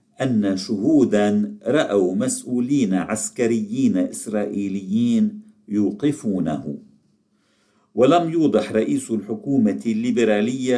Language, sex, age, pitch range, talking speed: Arabic, male, 50-69, 100-130 Hz, 65 wpm